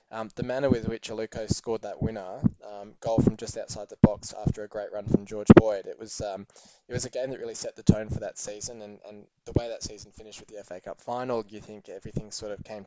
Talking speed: 260 wpm